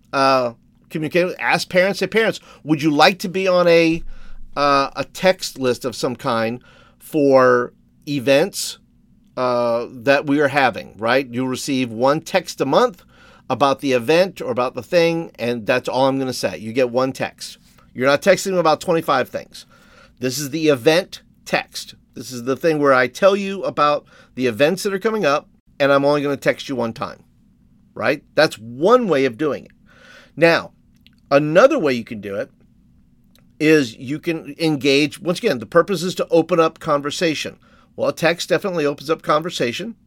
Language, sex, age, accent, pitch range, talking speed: English, male, 50-69, American, 135-185 Hz, 180 wpm